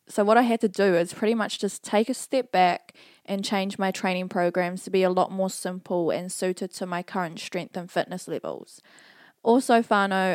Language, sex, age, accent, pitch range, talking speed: English, female, 20-39, Australian, 180-205 Hz, 210 wpm